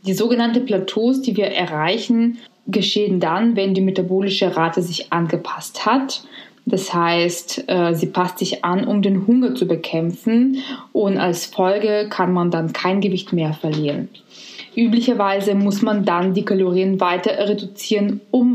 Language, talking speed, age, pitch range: German, 145 wpm, 20-39, 180-215 Hz